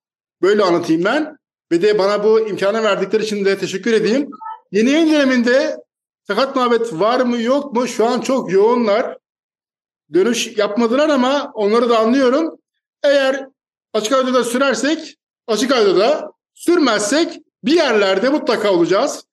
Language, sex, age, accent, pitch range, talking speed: Turkish, male, 50-69, native, 210-275 Hz, 140 wpm